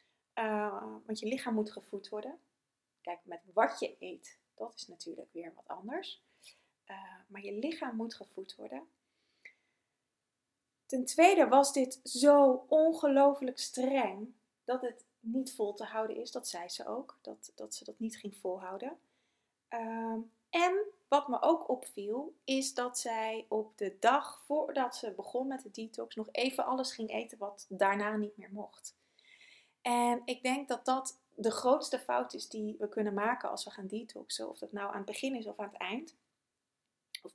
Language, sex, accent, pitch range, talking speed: Dutch, female, Dutch, 200-260 Hz, 170 wpm